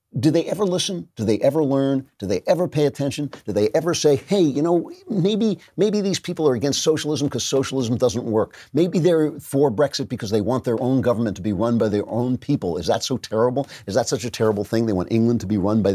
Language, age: English, 50-69